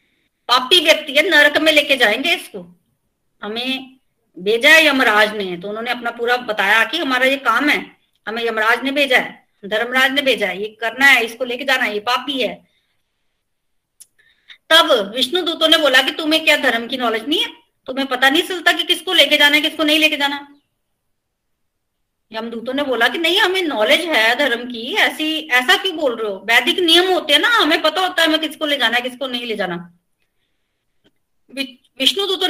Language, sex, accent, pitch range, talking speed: Hindi, female, native, 240-310 Hz, 190 wpm